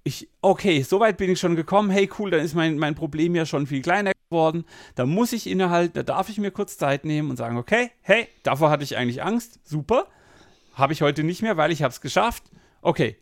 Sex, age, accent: male, 40-59, German